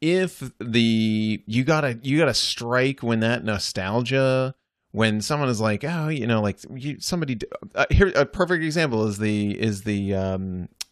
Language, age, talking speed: English, 30-49, 165 wpm